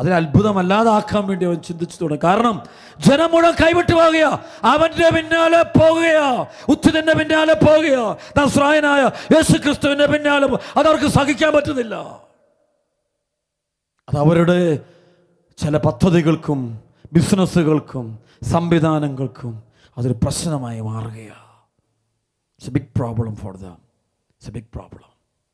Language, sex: English, male